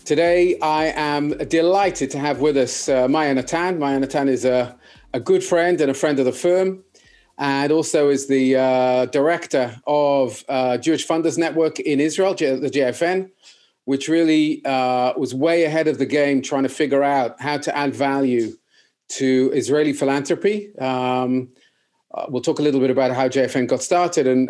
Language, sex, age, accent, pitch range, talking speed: English, male, 40-59, British, 130-170 Hz, 175 wpm